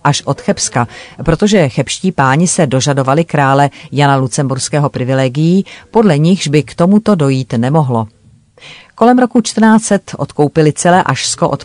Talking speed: 135 wpm